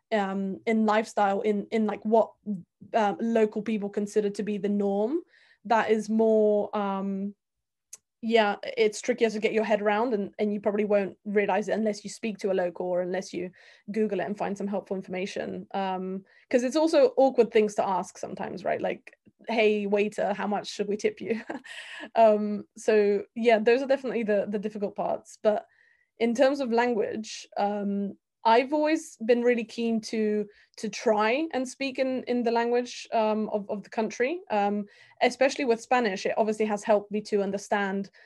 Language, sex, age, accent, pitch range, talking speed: English, female, 20-39, British, 200-225 Hz, 180 wpm